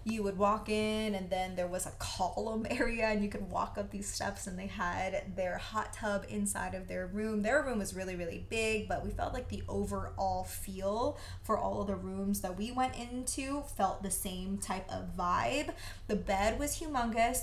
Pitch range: 185-220 Hz